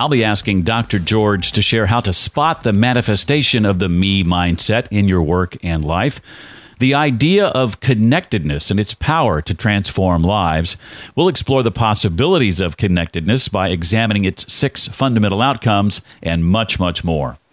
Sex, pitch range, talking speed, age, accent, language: male, 95-130 Hz, 160 wpm, 50-69, American, English